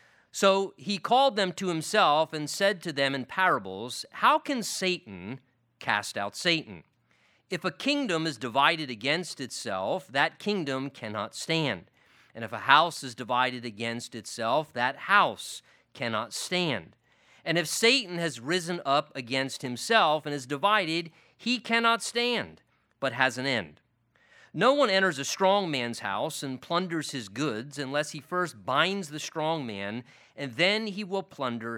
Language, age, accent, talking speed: English, 40-59, American, 155 wpm